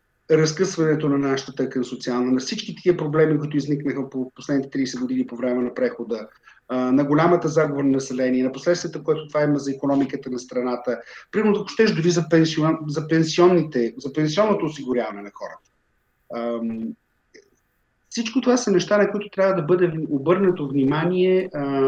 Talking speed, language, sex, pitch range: 160 wpm, English, male, 135-185 Hz